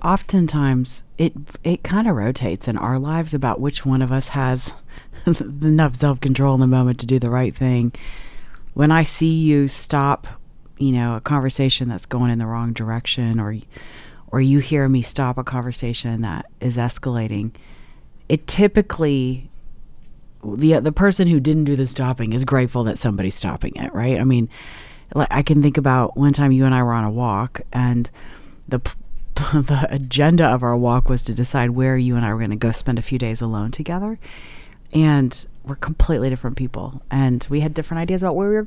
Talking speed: 190 wpm